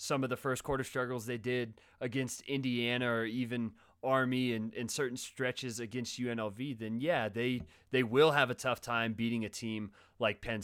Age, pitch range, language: 30-49, 110-130 Hz, English